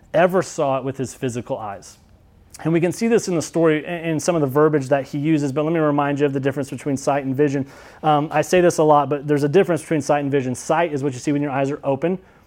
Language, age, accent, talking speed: English, 30-49, American, 285 wpm